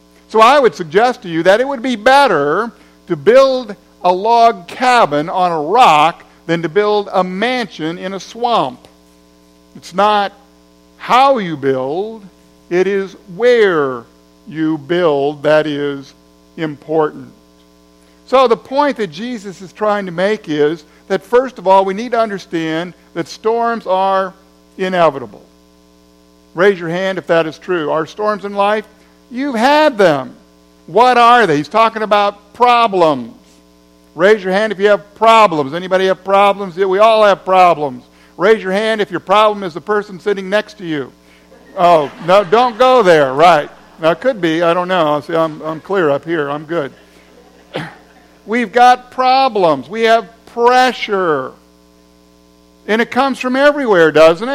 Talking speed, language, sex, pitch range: 160 wpm, English, male, 140-220 Hz